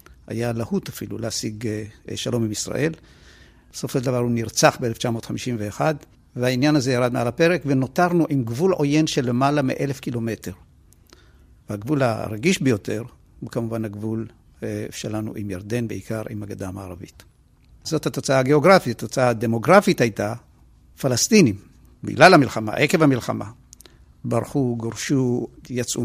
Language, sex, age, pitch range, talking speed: Hebrew, male, 50-69, 110-150 Hz, 120 wpm